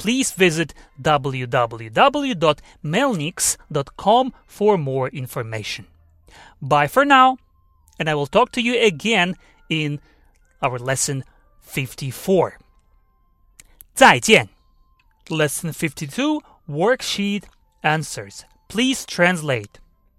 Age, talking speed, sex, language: 30-49, 80 wpm, male, English